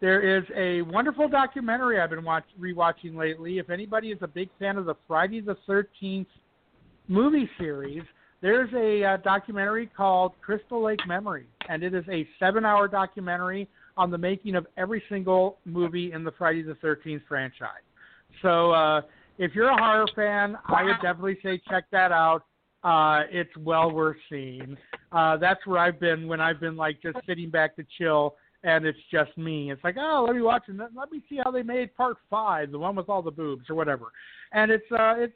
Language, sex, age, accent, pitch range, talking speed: English, male, 50-69, American, 165-220 Hz, 190 wpm